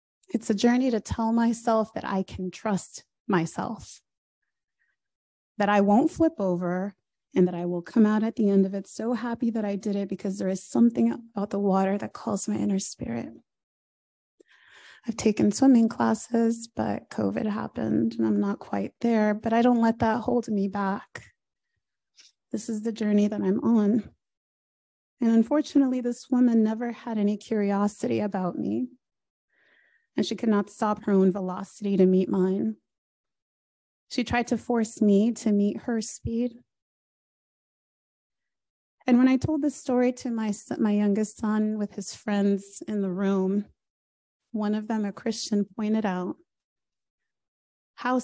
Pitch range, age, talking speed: 200-235 Hz, 30-49, 160 wpm